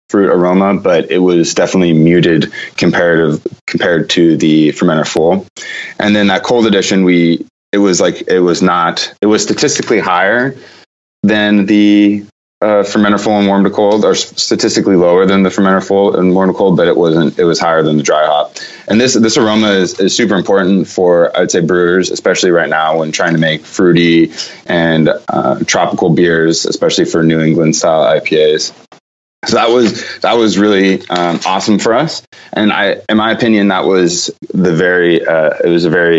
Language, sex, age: English, male, 20-39